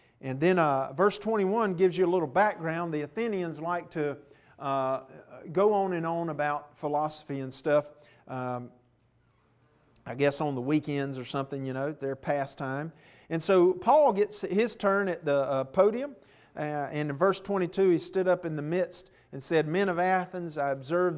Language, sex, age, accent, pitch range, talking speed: English, male, 40-59, American, 145-195 Hz, 180 wpm